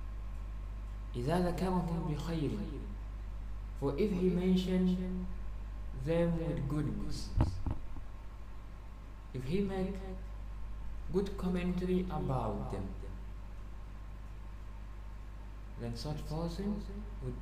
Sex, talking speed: male, 60 wpm